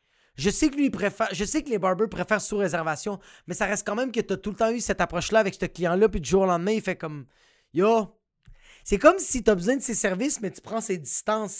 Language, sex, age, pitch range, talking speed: French, male, 30-49, 155-220 Hz, 275 wpm